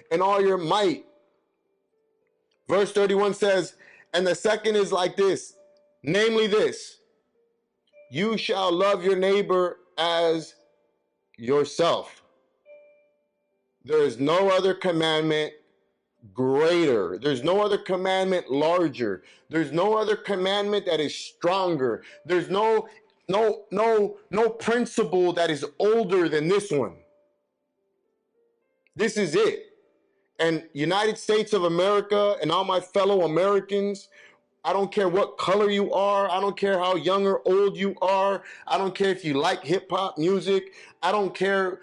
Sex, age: male, 30-49